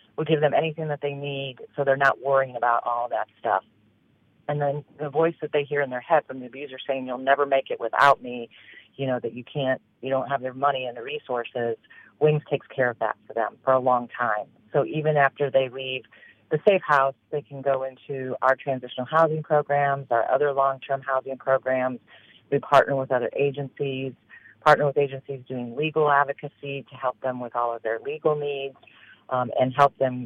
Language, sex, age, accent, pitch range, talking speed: English, female, 40-59, American, 125-145 Hz, 210 wpm